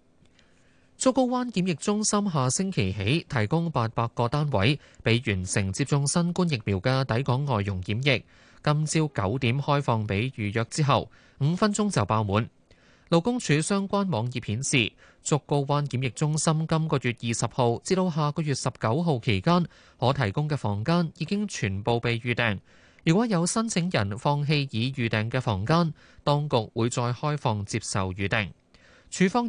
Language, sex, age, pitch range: Chinese, male, 20-39, 115-155 Hz